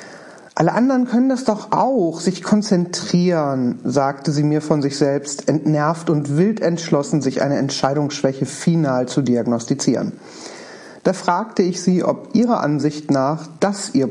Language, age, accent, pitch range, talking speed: German, 40-59, German, 140-200 Hz, 145 wpm